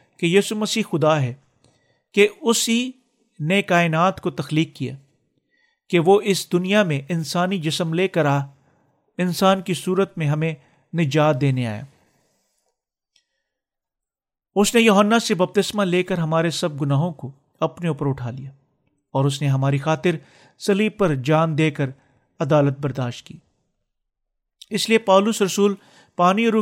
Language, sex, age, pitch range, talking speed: Urdu, male, 50-69, 145-195 Hz, 140 wpm